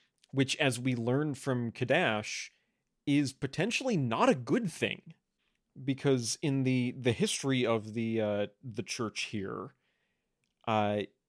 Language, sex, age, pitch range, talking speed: English, male, 30-49, 110-135 Hz, 130 wpm